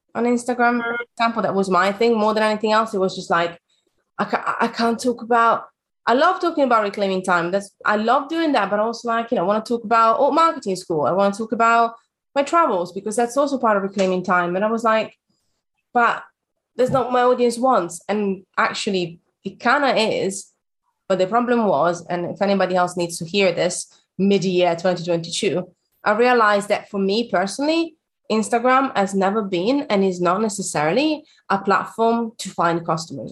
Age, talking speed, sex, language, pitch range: 20-39, 200 wpm, female, English, 180-235 Hz